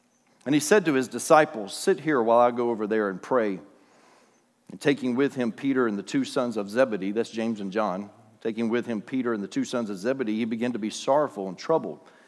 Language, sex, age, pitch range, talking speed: English, male, 40-59, 115-160 Hz, 230 wpm